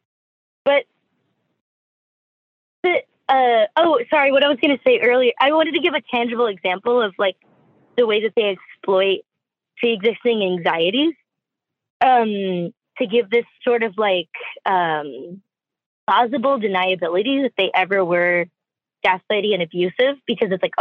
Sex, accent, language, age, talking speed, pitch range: female, American, English, 20-39, 140 wpm, 195-270 Hz